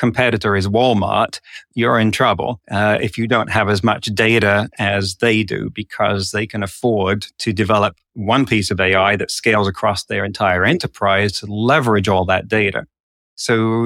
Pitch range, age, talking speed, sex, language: 105-120 Hz, 40-59, 170 wpm, male, English